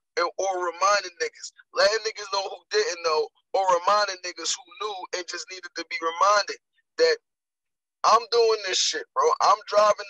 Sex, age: male, 20-39